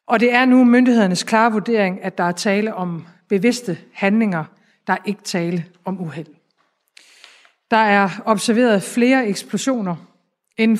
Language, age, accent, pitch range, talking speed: Danish, 60-79, native, 125-200 Hz, 140 wpm